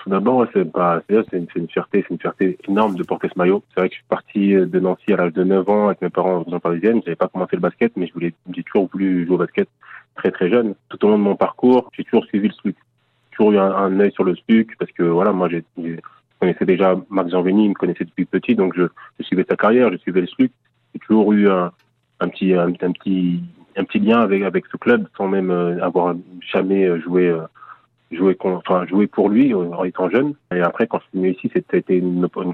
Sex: male